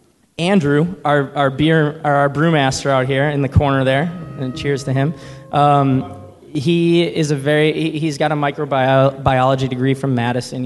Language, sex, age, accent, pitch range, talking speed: English, male, 20-39, American, 130-150 Hz, 160 wpm